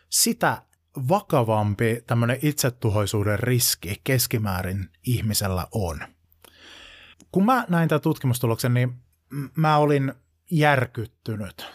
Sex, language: male, Finnish